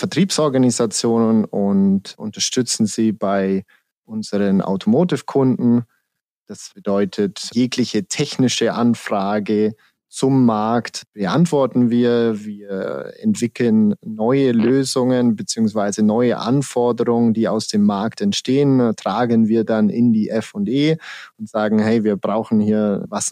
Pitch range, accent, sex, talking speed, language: 110-135 Hz, German, male, 110 wpm, German